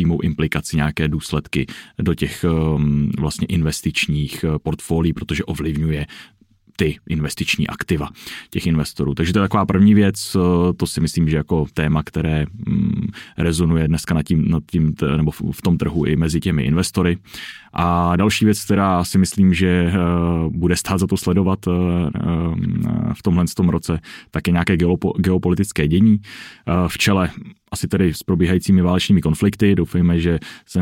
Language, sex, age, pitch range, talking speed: Czech, male, 20-39, 80-95 Hz, 150 wpm